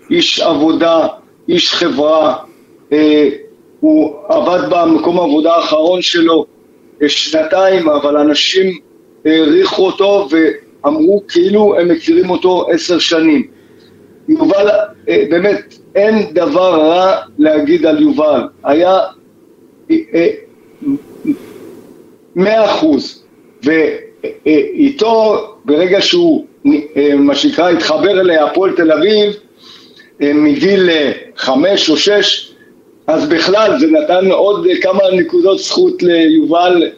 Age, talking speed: 50-69, 105 wpm